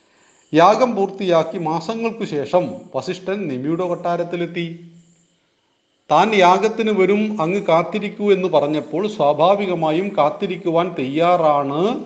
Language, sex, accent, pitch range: Hindi, male, native, 150-200 Hz